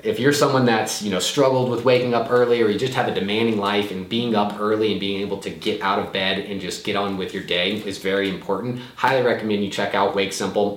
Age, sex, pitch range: 20-39, male, 95-115 Hz